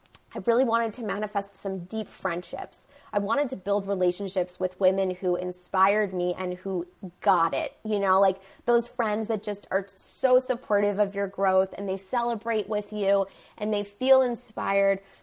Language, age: English, 20-39